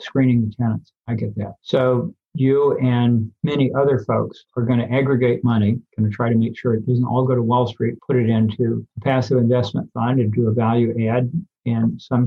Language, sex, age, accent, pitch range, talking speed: English, male, 50-69, American, 115-130 Hz, 215 wpm